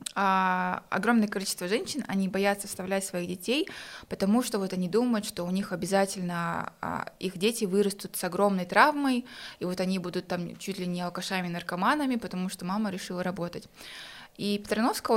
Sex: female